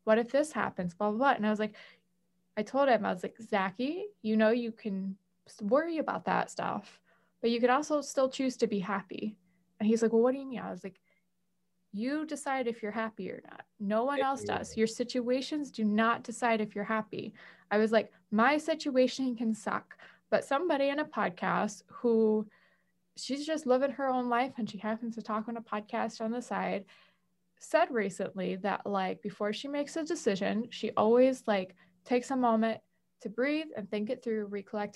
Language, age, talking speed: English, 20-39, 200 wpm